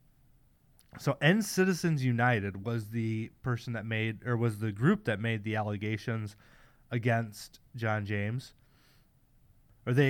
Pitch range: 115-140 Hz